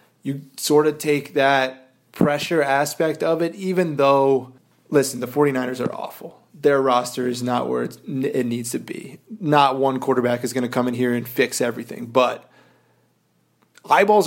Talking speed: 165 wpm